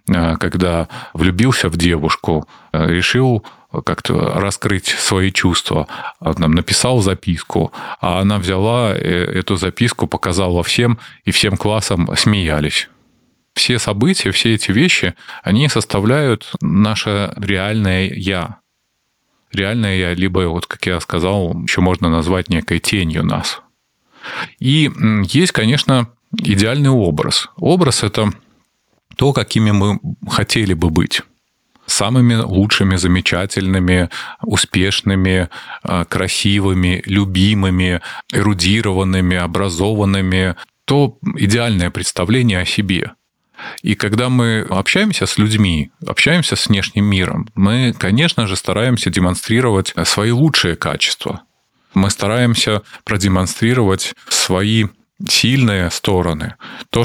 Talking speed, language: 100 wpm, Russian